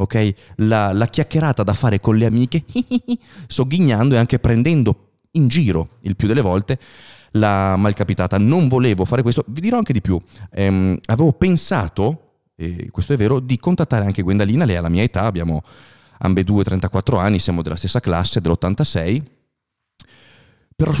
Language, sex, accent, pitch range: Italian, male, native, 95-130 Hz